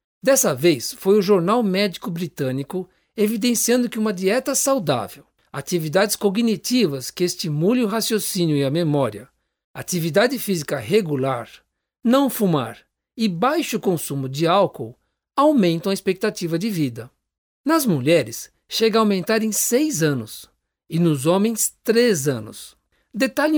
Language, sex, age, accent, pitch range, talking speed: Portuguese, male, 60-79, Brazilian, 150-225 Hz, 125 wpm